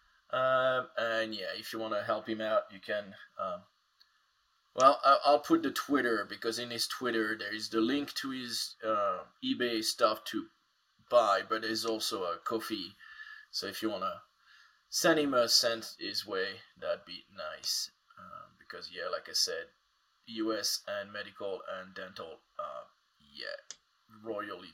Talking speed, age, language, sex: 165 wpm, 20-39, English, male